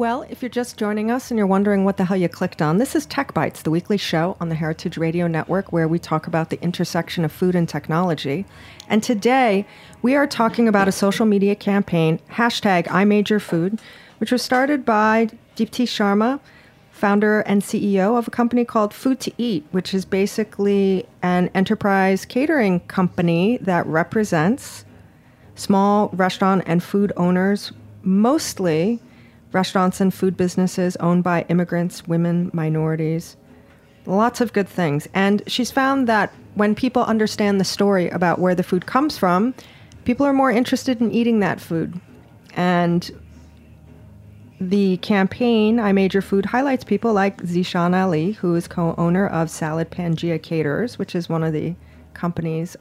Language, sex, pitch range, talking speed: English, female, 170-215 Hz, 160 wpm